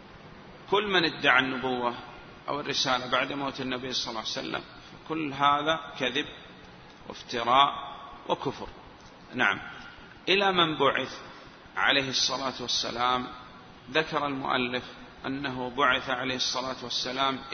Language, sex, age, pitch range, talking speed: Arabic, male, 40-59, 125-145 Hz, 110 wpm